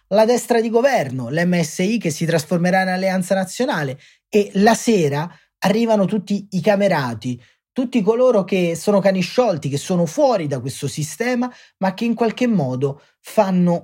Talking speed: 155 wpm